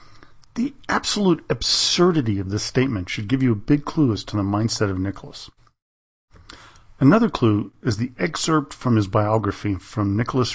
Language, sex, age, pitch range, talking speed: English, male, 50-69, 100-140 Hz, 160 wpm